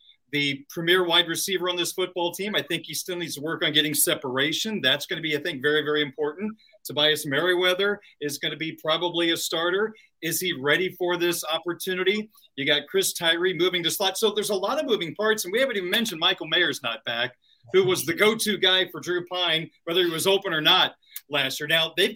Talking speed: 225 wpm